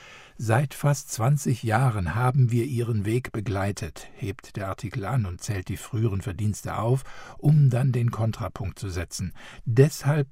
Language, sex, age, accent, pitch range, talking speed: German, male, 60-79, German, 105-135 Hz, 150 wpm